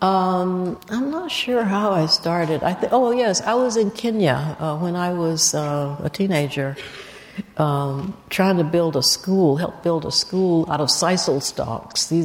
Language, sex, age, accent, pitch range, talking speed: English, female, 60-79, American, 140-185 Hz, 175 wpm